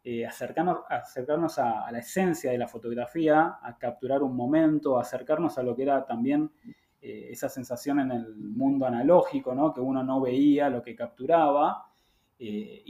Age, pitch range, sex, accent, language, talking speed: 20-39, 130-165 Hz, male, Argentinian, Spanish, 170 wpm